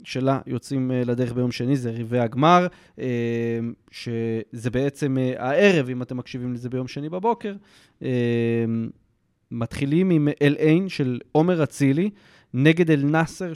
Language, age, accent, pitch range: Hebrew, 20-39, native, 125-150 Hz